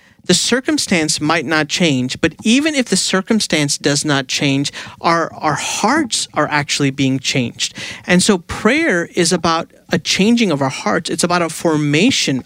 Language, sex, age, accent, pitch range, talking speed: English, male, 40-59, American, 140-180 Hz, 165 wpm